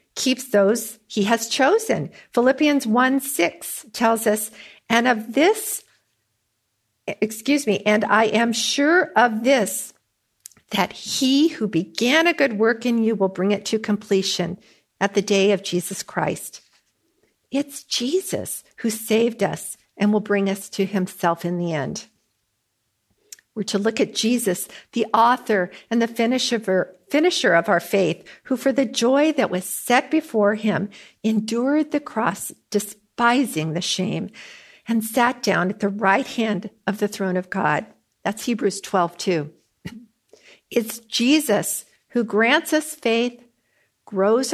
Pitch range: 195-250 Hz